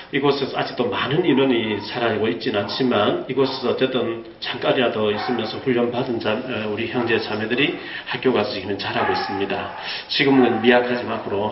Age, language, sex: 40-59, Korean, male